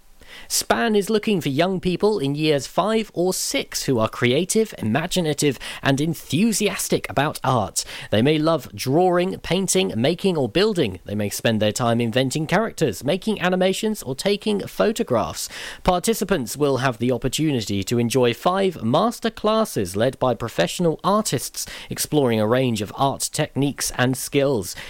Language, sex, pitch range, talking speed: English, male, 120-170 Hz, 145 wpm